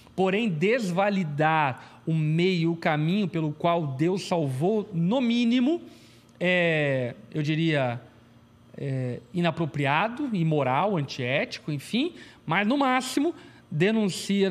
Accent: Brazilian